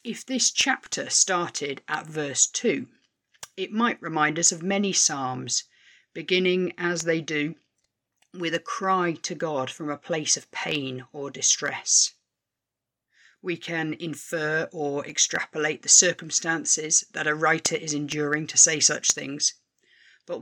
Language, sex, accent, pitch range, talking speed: English, female, British, 150-185 Hz, 140 wpm